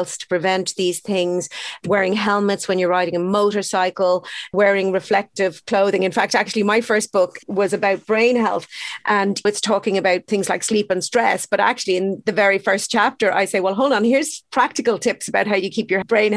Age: 40-59